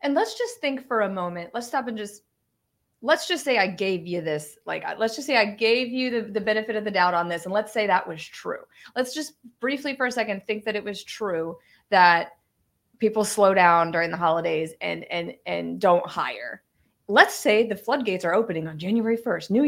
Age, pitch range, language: 30-49, 185-245 Hz, English